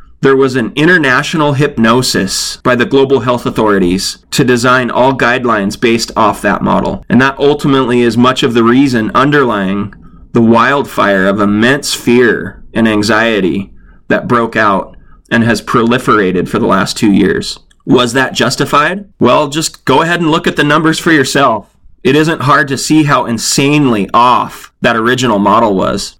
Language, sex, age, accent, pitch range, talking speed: English, male, 30-49, American, 115-140 Hz, 165 wpm